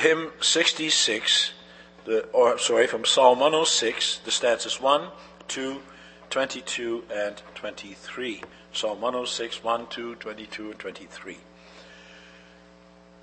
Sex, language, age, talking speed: male, English, 60-79, 100 wpm